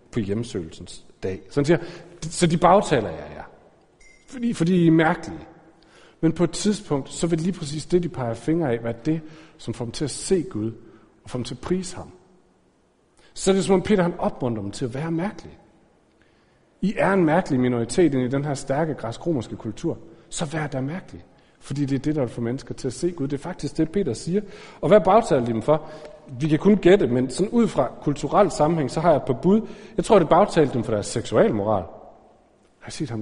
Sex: male